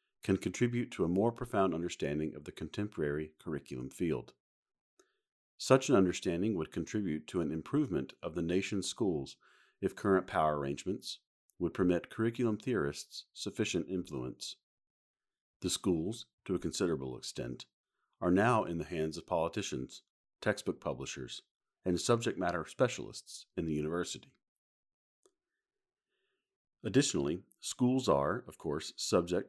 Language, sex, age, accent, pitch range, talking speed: English, male, 50-69, American, 80-110 Hz, 125 wpm